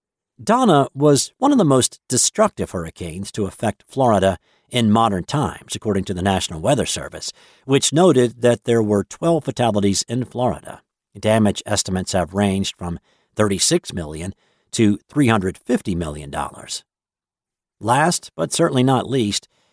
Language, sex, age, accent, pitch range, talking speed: English, male, 50-69, American, 95-130 Hz, 135 wpm